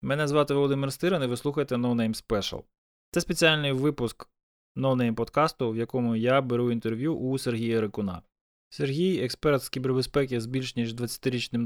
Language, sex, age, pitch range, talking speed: Ukrainian, male, 20-39, 120-140 Hz, 155 wpm